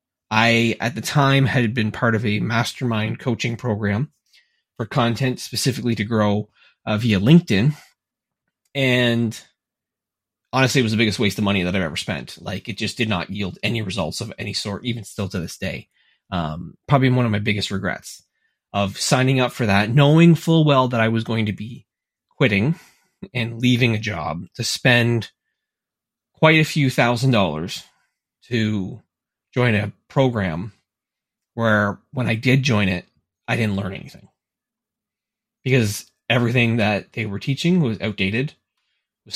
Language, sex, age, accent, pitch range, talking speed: English, male, 20-39, American, 105-125 Hz, 160 wpm